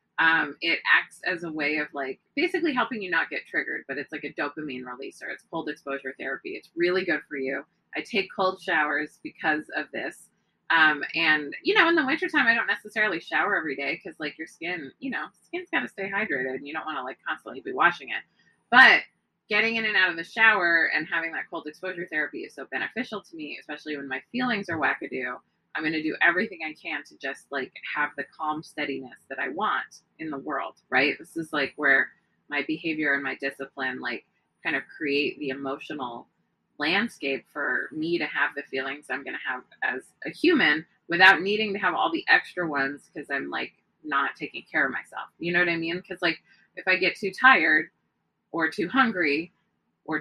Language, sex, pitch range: English, female, 150-220 Hz